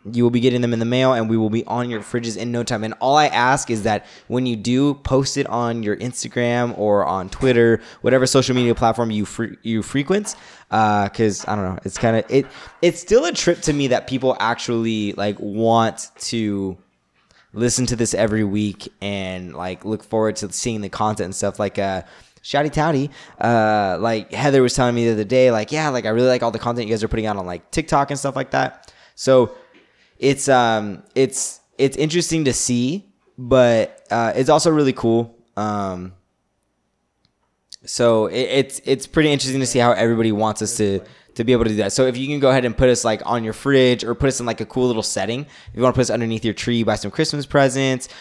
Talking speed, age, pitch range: 225 wpm, 20-39, 105-130 Hz